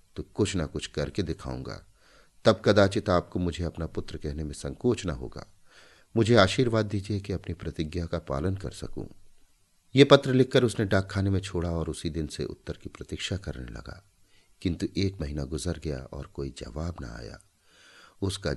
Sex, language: male, Hindi